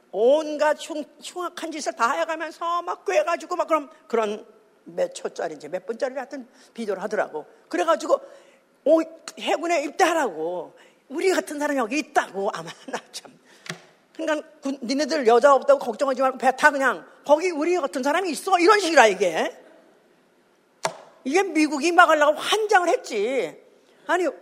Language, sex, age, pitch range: Korean, female, 40-59, 275-365 Hz